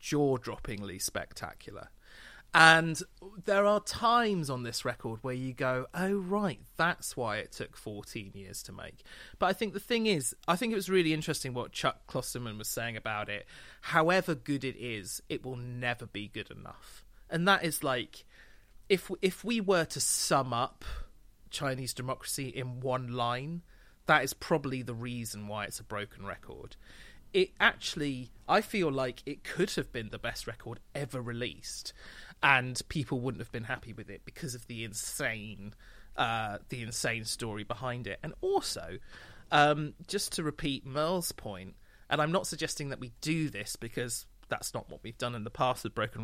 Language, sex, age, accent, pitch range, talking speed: English, male, 30-49, British, 115-160 Hz, 175 wpm